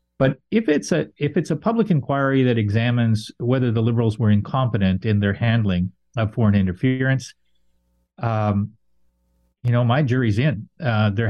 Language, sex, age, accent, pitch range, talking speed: English, male, 40-59, American, 105-120 Hz, 160 wpm